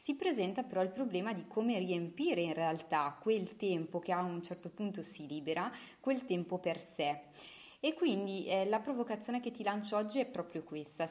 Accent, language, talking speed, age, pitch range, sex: native, Italian, 190 wpm, 20-39, 165-200 Hz, female